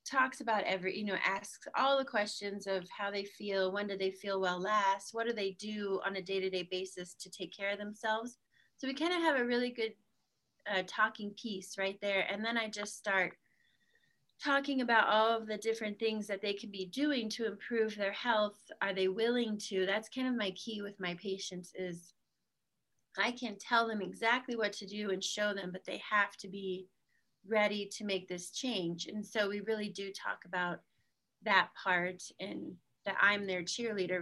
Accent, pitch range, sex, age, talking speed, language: American, 190-225 Hz, female, 30-49, 200 wpm, English